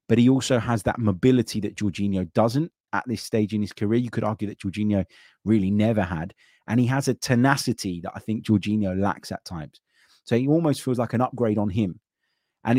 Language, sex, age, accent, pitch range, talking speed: English, male, 30-49, British, 95-120 Hz, 210 wpm